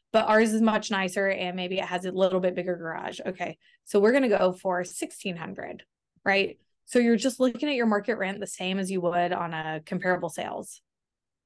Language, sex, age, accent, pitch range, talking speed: English, female, 20-39, American, 190-230 Hz, 210 wpm